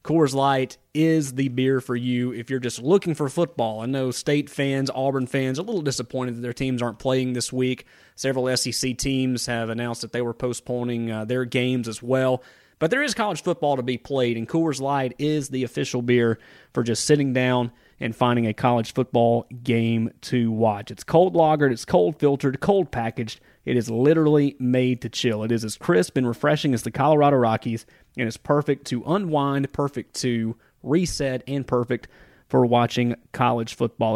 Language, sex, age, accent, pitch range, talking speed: English, male, 30-49, American, 120-150 Hz, 190 wpm